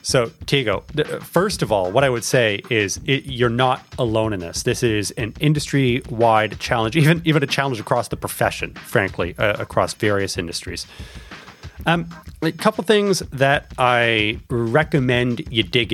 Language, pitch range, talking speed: English, 110-150 Hz, 160 wpm